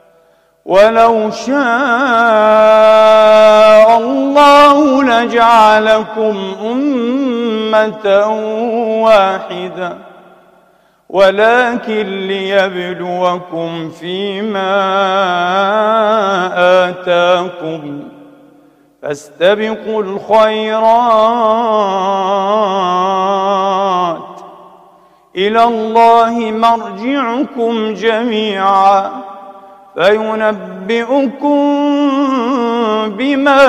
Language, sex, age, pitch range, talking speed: Arabic, male, 40-59, 200-240 Hz, 30 wpm